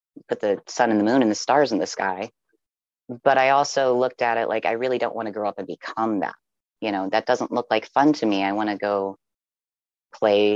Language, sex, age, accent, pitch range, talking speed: English, female, 30-49, American, 105-130 Hz, 245 wpm